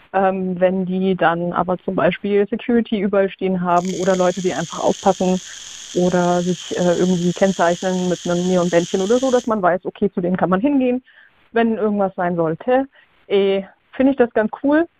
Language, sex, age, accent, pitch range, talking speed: German, female, 20-39, German, 180-210 Hz, 180 wpm